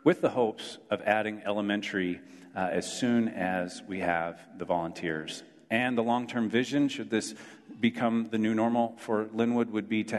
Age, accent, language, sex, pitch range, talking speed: 40-59, American, English, male, 95-120 Hz, 170 wpm